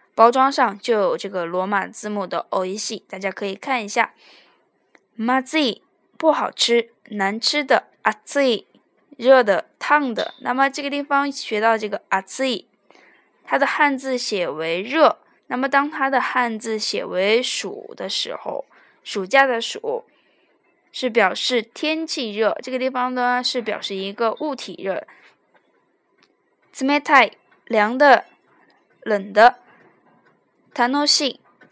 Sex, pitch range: female, 220-285 Hz